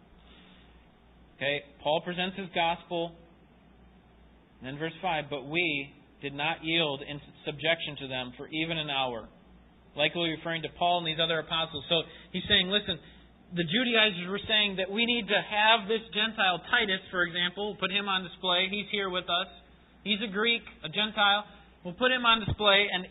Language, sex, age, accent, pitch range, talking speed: English, male, 30-49, American, 170-215 Hz, 175 wpm